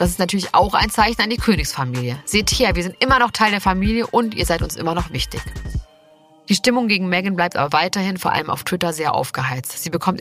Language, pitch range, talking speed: German, 155-205 Hz, 235 wpm